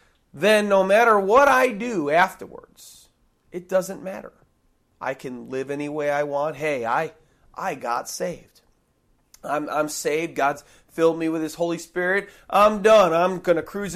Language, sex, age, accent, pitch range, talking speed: English, male, 40-59, American, 150-205 Hz, 165 wpm